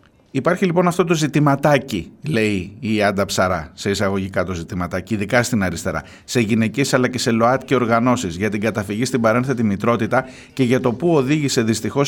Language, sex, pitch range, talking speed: Greek, male, 115-170 Hz, 180 wpm